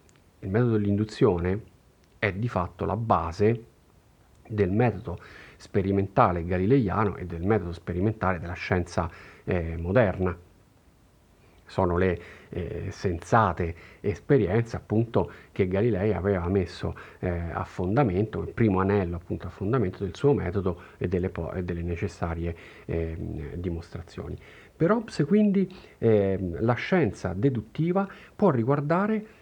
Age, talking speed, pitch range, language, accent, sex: 50-69, 115 wpm, 90-130 Hz, Italian, native, male